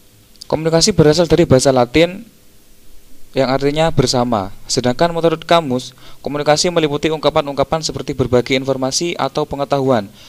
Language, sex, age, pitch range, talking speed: Indonesian, male, 20-39, 120-155 Hz, 110 wpm